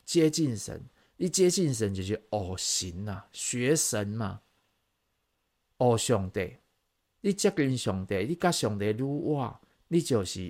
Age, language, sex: 50-69, Chinese, male